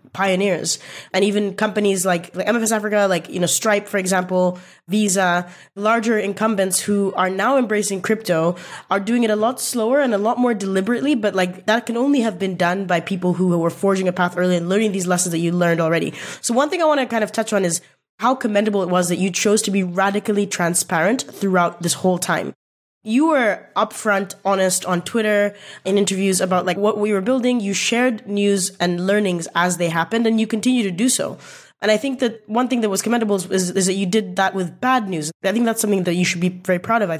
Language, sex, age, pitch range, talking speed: English, female, 20-39, 180-220 Hz, 225 wpm